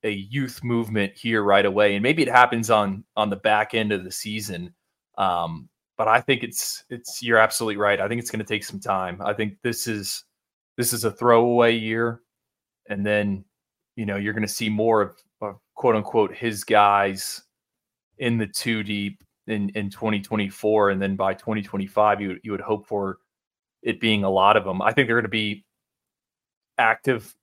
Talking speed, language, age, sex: 190 wpm, English, 20-39, male